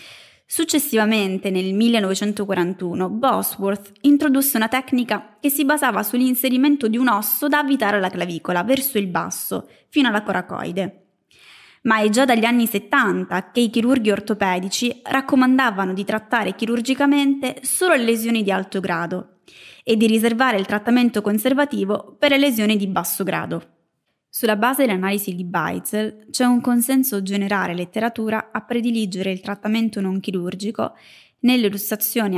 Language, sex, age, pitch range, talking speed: Italian, female, 20-39, 190-245 Hz, 135 wpm